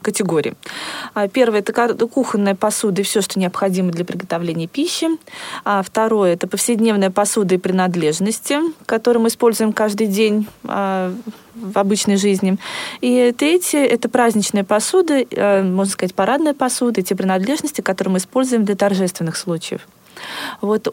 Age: 20-39